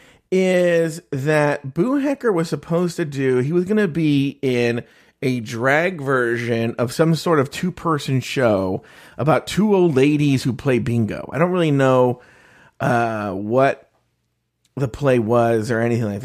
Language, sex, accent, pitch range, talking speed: English, male, American, 115-165 Hz, 155 wpm